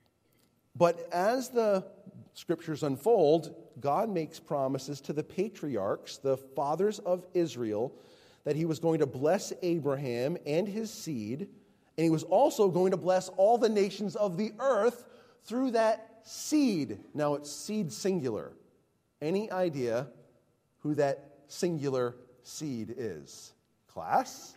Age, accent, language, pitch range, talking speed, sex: 40-59, American, English, 150-230 Hz, 130 wpm, male